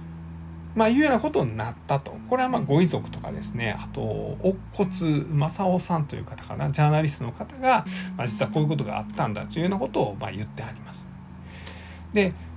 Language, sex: Japanese, male